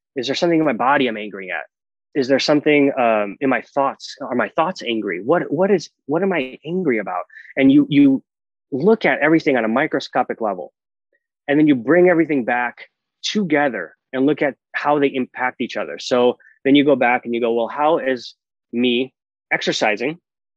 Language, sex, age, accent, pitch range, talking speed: English, male, 20-39, American, 120-155 Hz, 195 wpm